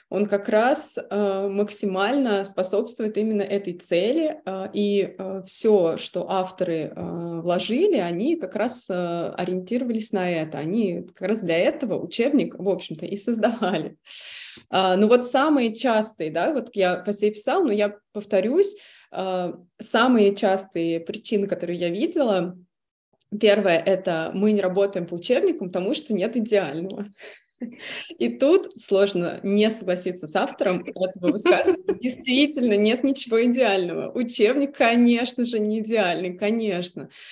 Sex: female